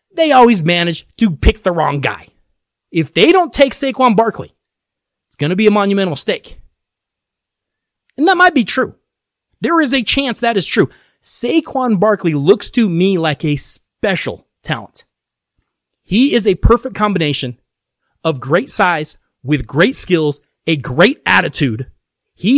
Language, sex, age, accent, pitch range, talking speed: English, male, 30-49, American, 175-260 Hz, 150 wpm